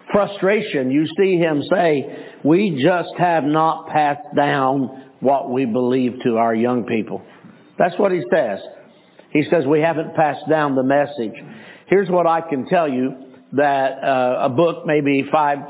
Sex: male